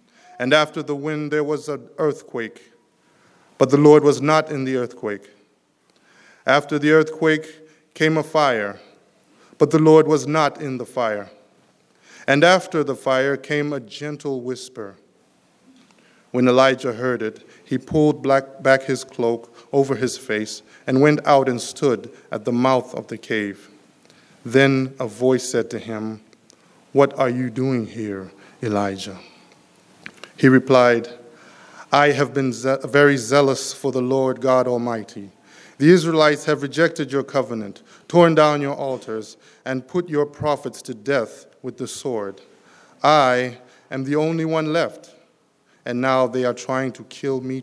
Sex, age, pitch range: male, 20-39, 125-150 Hz